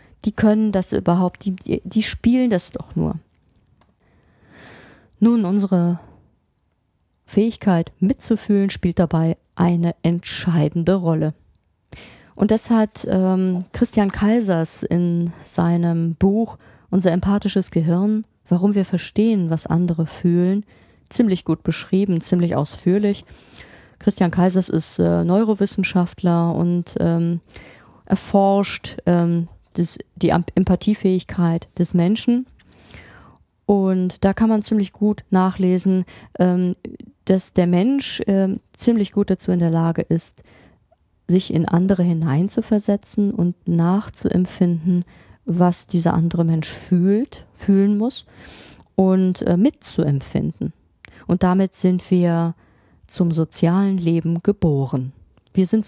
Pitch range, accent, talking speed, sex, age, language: 170-200 Hz, German, 105 wpm, female, 30-49, German